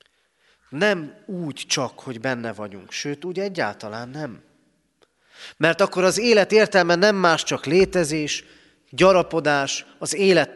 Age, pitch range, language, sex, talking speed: 30-49, 140-185 Hz, Hungarian, male, 125 wpm